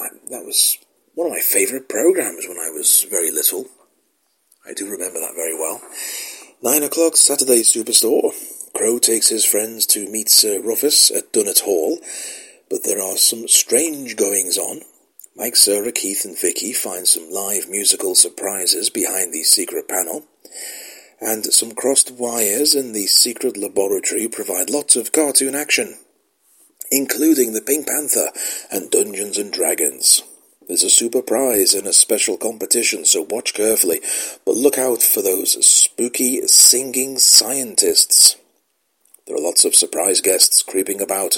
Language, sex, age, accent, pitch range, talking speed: English, male, 40-59, British, 330-435 Hz, 145 wpm